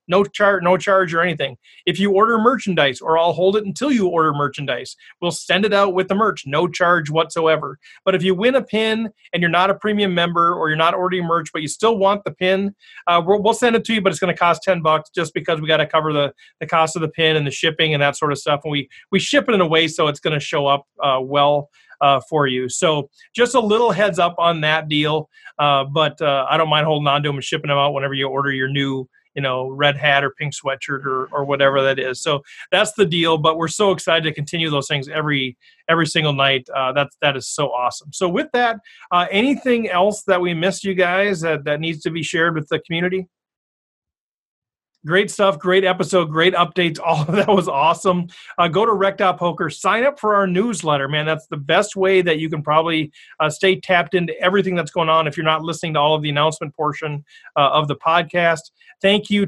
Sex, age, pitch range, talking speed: male, 30-49, 150-190 Hz, 240 wpm